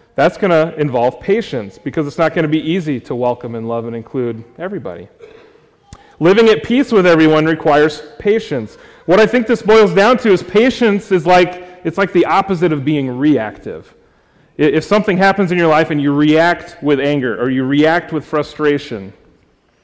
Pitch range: 145-195 Hz